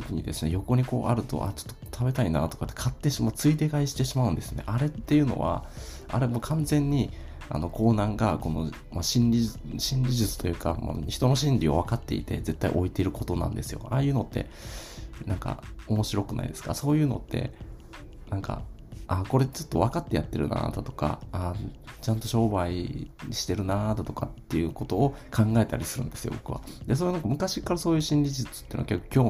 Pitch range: 100-130 Hz